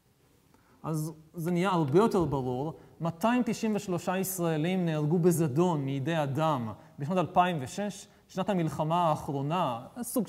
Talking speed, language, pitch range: 105 wpm, Hebrew, 155-195 Hz